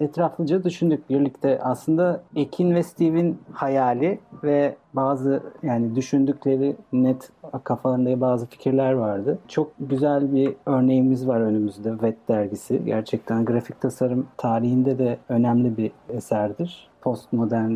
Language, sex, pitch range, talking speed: Turkish, male, 115-155 Hz, 115 wpm